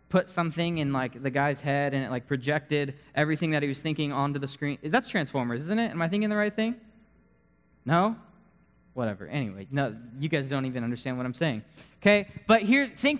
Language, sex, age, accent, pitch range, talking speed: English, male, 20-39, American, 140-230 Hz, 205 wpm